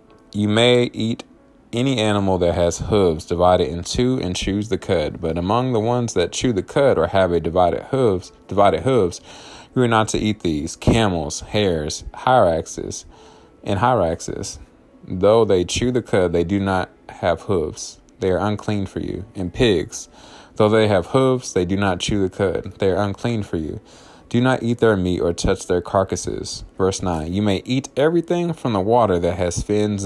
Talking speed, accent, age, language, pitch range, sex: 190 wpm, American, 20-39, English, 90-115 Hz, male